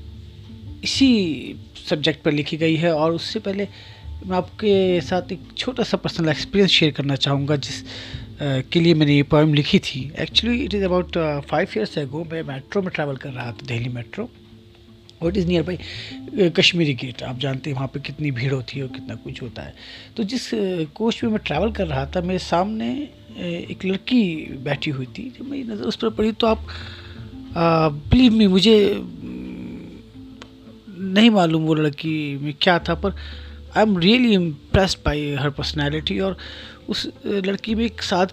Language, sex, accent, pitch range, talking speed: Hindi, male, native, 135-190 Hz, 180 wpm